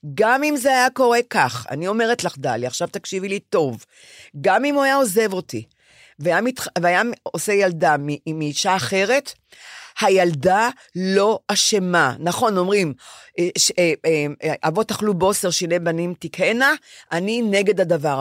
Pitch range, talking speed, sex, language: 155-210 Hz, 130 wpm, female, Hebrew